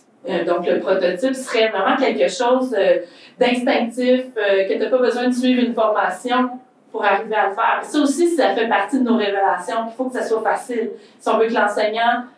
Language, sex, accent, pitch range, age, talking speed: French, female, Canadian, 205-255 Hz, 30-49, 205 wpm